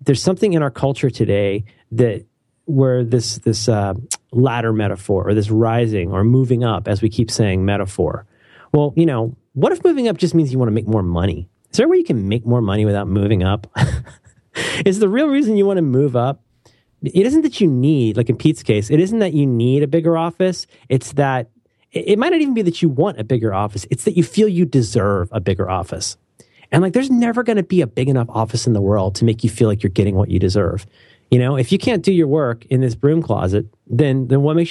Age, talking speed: 30-49, 240 wpm